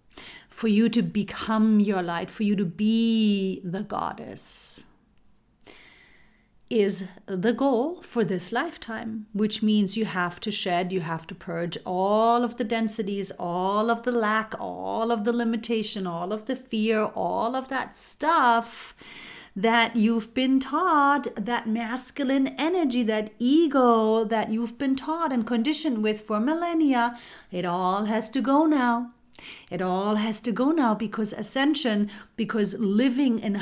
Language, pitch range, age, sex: English, 195-245 Hz, 40-59, female